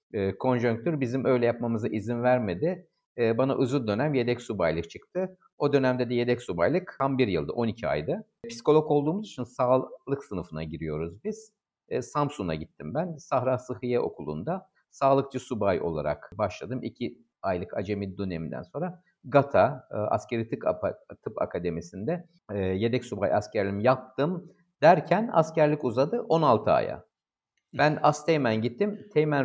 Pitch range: 120-165 Hz